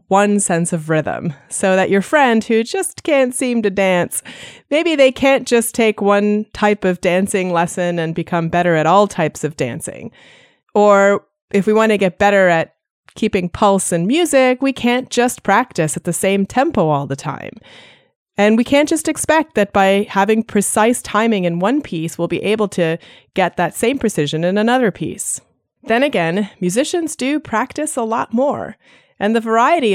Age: 30-49